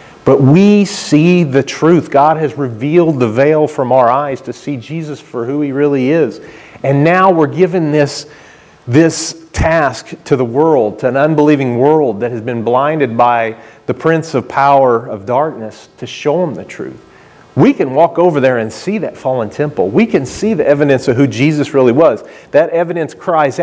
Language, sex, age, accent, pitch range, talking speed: English, male, 40-59, American, 120-155 Hz, 190 wpm